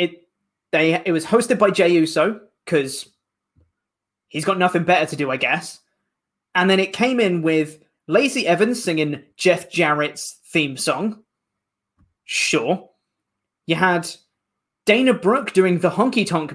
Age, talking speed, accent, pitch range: 20-39, 140 wpm, British, 160-245 Hz